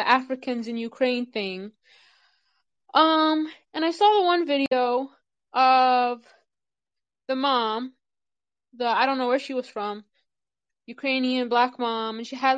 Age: 20-39